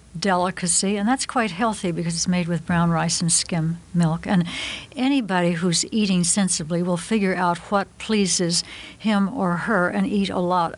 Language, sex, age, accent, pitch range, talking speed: English, female, 60-79, American, 175-205 Hz, 175 wpm